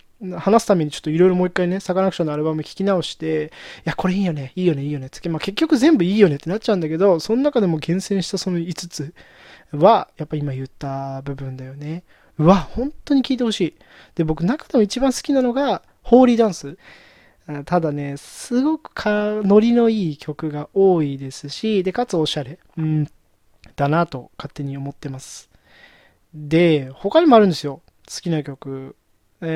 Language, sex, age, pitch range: Japanese, male, 20-39, 155-225 Hz